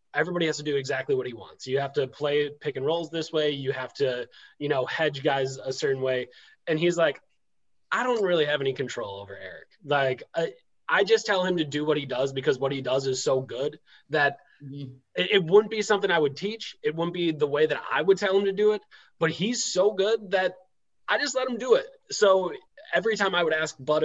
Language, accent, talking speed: English, American, 240 wpm